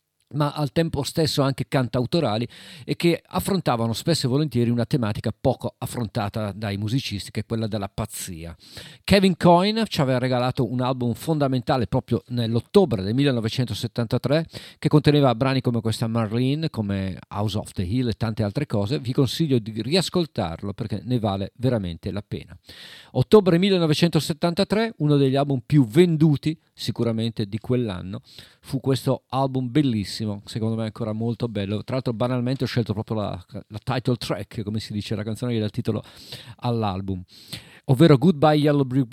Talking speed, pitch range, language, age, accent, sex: 160 wpm, 110-140 Hz, Italian, 50-69, native, male